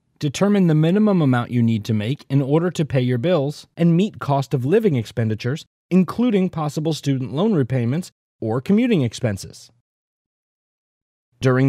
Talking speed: 140 wpm